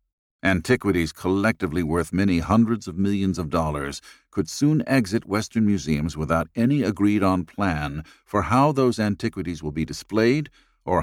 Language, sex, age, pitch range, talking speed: English, male, 50-69, 80-110 Hz, 140 wpm